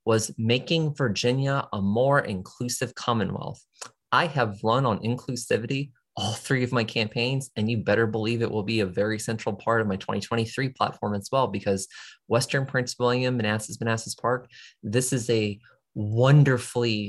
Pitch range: 110-130 Hz